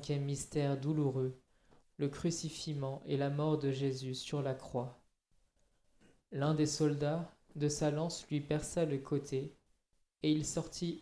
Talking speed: 135 wpm